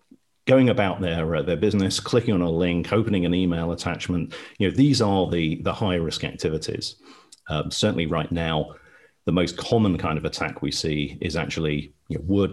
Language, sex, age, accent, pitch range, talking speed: English, male, 40-59, British, 80-95 Hz, 190 wpm